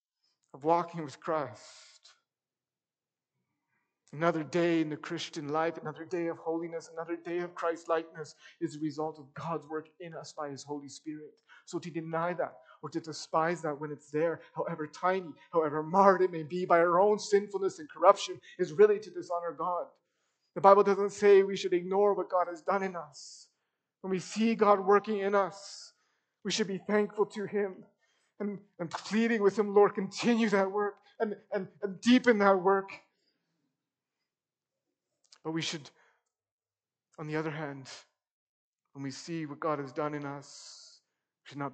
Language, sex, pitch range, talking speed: English, male, 155-200 Hz, 170 wpm